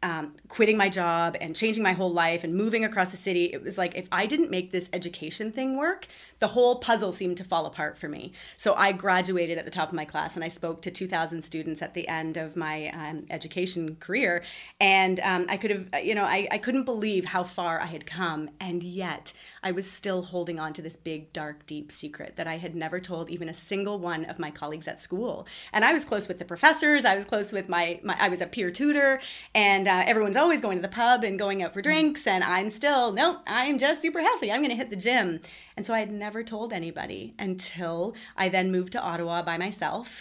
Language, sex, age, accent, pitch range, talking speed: English, female, 30-49, American, 170-210 Hz, 240 wpm